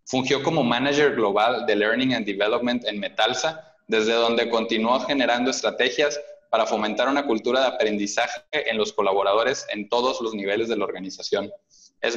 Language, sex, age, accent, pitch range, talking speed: Spanish, male, 20-39, Mexican, 115-160 Hz, 160 wpm